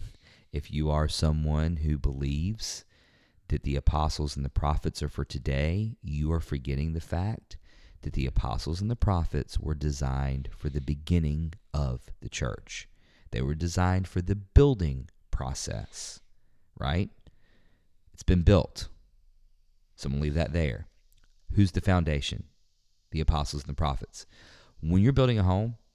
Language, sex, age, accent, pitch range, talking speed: English, male, 40-59, American, 75-95 Hz, 150 wpm